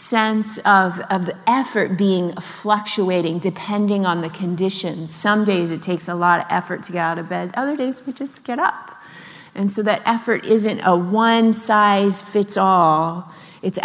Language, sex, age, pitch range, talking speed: English, female, 30-49, 170-210 Hz, 180 wpm